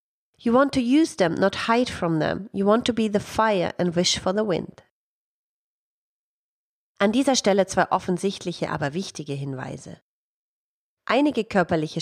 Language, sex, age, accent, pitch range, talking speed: German, female, 30-49, German, 160-225 Hz, 150 wpm